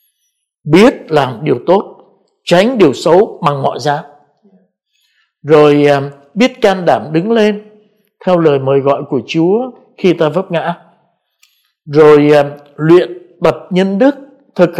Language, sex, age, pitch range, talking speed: Vietnamese, male, 60-79, 155-220 Hz, 130 wpm